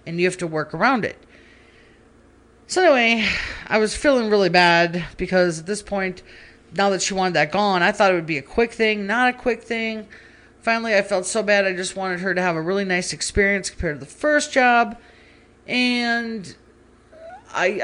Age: 40-59